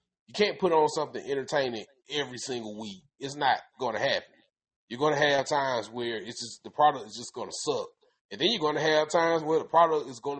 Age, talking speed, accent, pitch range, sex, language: 30-49, 235 wpm, American, 130-165 Hz, male, English